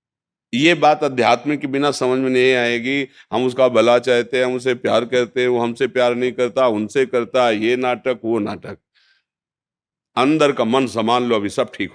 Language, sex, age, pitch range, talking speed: Hindi, male, 50-69, 105-125 Hz, 175 wpm